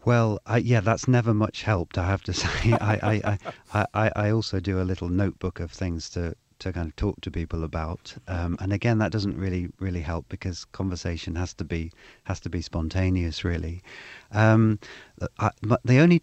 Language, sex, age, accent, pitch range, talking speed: English, male, 40-59, British, 85-100 Hz, 195 wpm